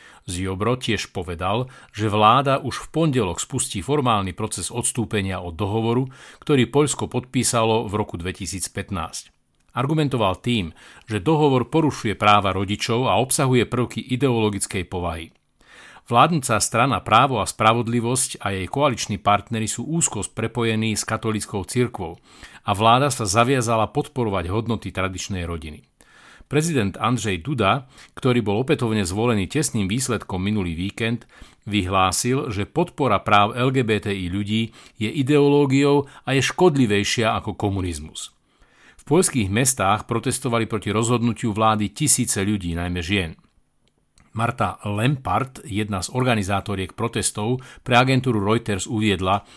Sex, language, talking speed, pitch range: male, Slovak, 120 wpm, 100-125 Hz